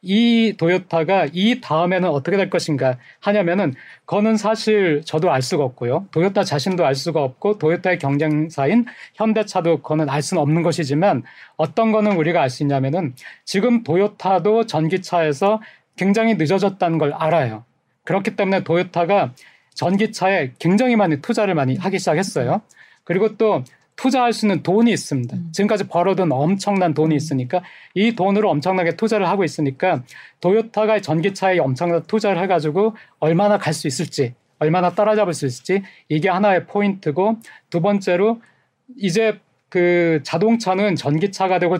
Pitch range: 155-205 Hz